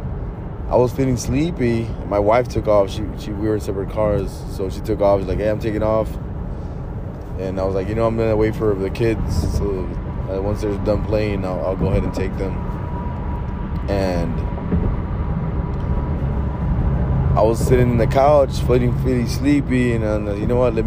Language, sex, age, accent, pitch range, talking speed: English, male, 20-39, American, 90-110 Hz, 190 wpm